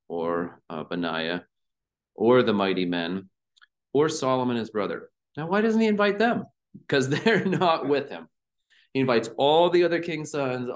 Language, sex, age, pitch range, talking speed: English, male, 30-49, 90-120 Hz, 160 wpm